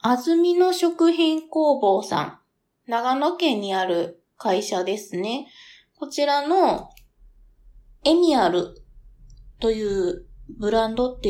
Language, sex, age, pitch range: Japanese, female, 20-39, 205-265 Hz